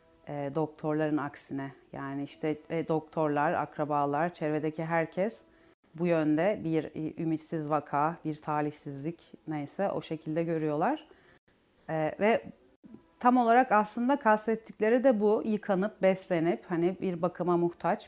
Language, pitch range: Turkish, 160-195 Hz